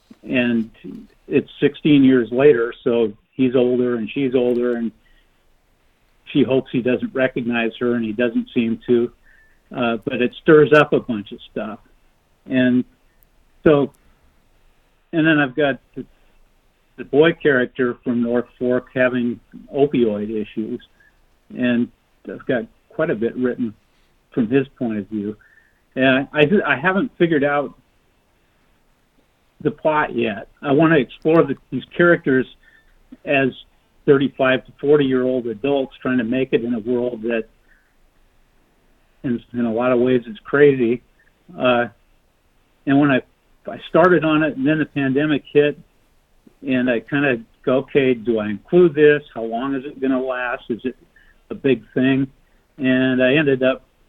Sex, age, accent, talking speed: male, 50-69, American, 155 wpm